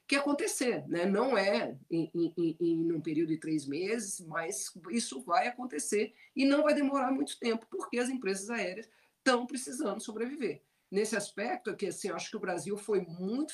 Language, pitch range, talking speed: Portuguese, 175-240 Hz, 190 wpm